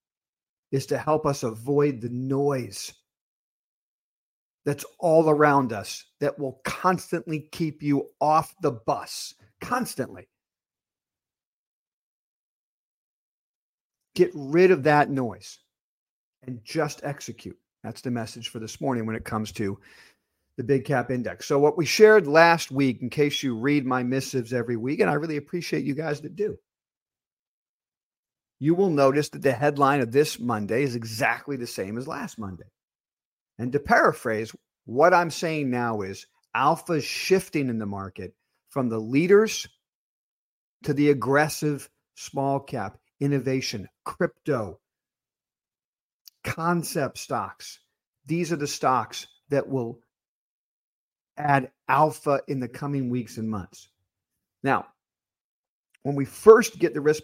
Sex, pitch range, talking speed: male, 120-150 Hz, 135 wpm